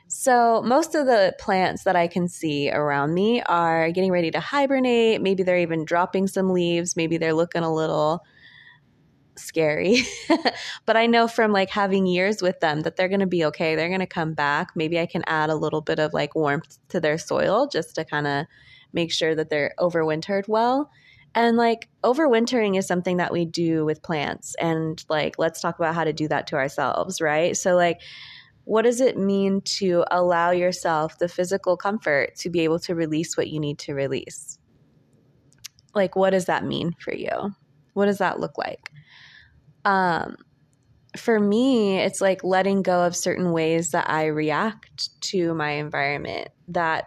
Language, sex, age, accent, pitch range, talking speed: English, female, 20-39, American, 160-215 Hz, 185 wpm